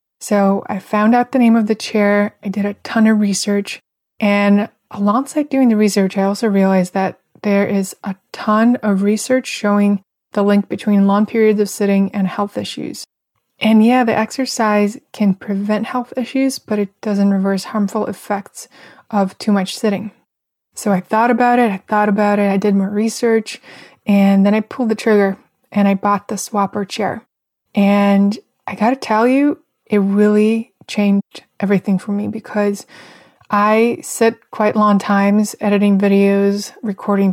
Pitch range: 200-220 Hz